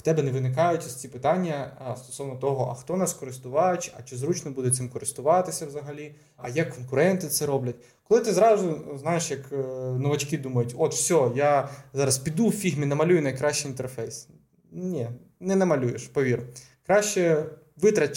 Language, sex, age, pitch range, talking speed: Ukrainian, male, 20-39, 130-175 Hz, 155 wpm